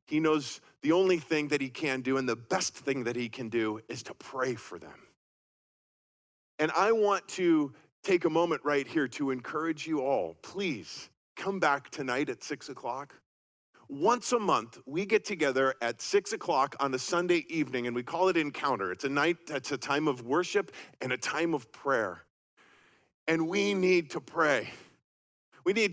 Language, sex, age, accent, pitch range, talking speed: English, male, 40-59, American, 150-210 Hz, 185 wpm